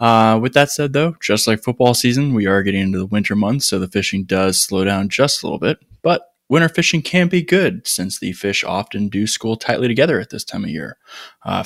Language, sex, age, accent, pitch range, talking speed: English, male, 20-39, American, 110-140 Hz, 235 wpm